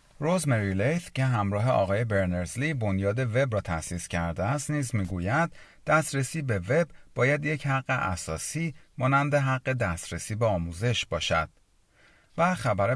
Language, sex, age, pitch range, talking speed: Persian, male, 40-59, 95-135 Hz, 135 wpm